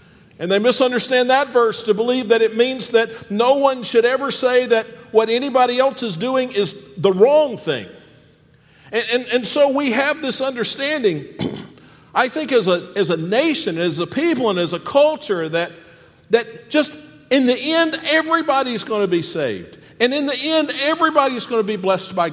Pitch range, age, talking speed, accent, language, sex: 150-230 Hz, 50-69, 185 wpm, American, English, male